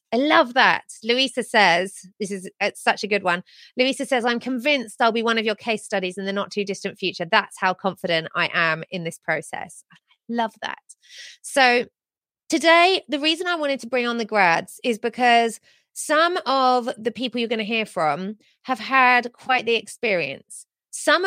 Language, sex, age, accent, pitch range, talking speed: English, female, 30-49, British, 200-270 Hz, 190 wpm